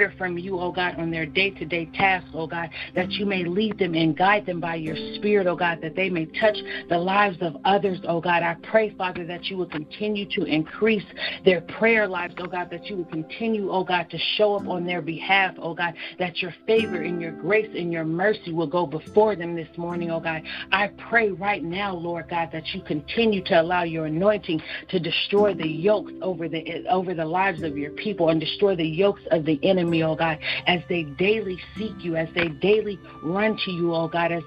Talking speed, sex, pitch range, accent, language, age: 220 wpm, female, 170-205 Hz, American, English, 40-59